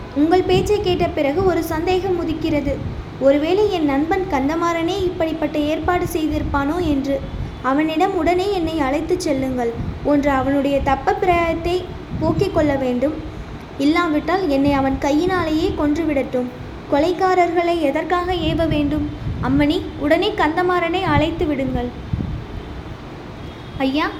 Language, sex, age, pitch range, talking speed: Tamil, female, 20-39, 285-355 Hz, 100 wpm